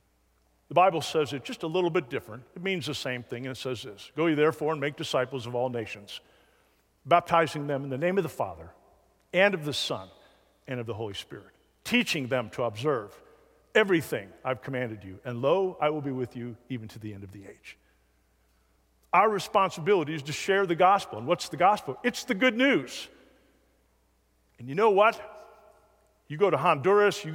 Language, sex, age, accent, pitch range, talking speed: English, male, 50-69, American, 115-185 Hz, 200 wpm